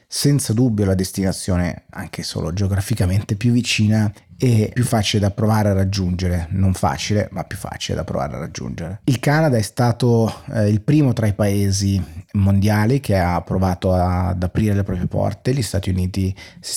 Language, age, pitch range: Italian, 30-49, 95-110 Hz